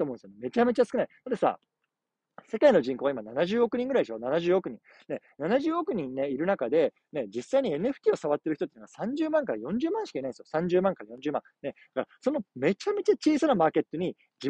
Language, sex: Japanese, male